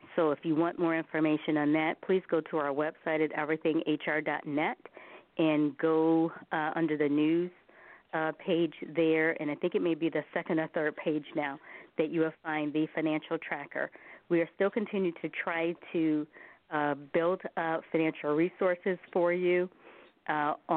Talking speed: 170 wpm